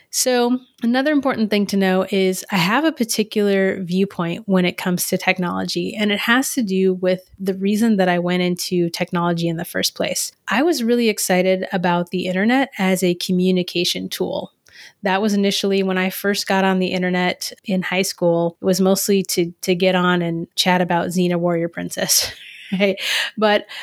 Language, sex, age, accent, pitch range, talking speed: English, female, 30-49, American, 180-210 Hz, 185 wpm